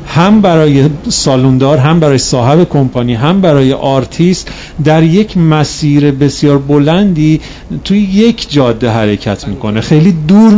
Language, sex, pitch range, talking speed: Persian, male, 130-175 Hz, 125 wpm